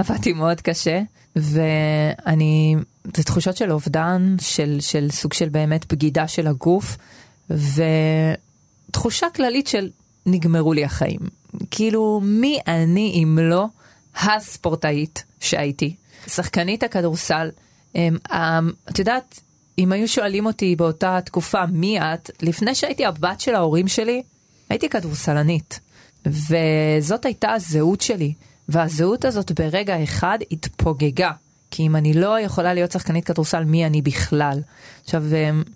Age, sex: 30-49, female